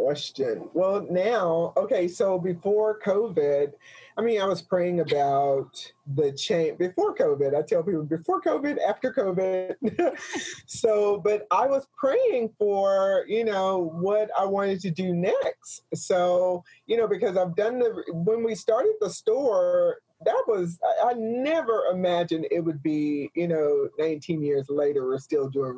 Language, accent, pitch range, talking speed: English, American, 150-215 Hz, 155 wpm